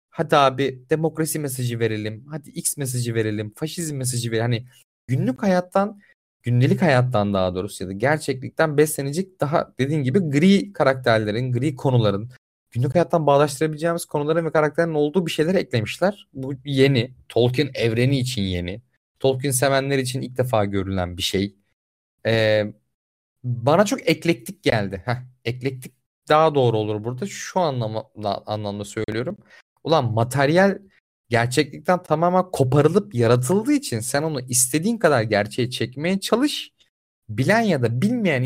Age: 30-49